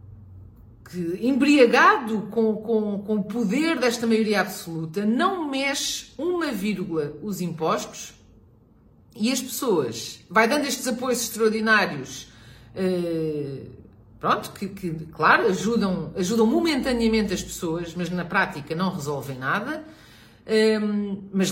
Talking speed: 110 wpm